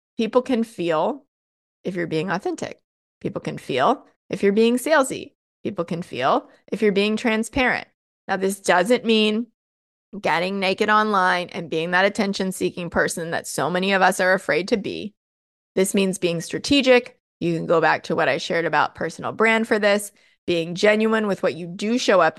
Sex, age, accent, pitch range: female, 20-39, American, 180-230 Hz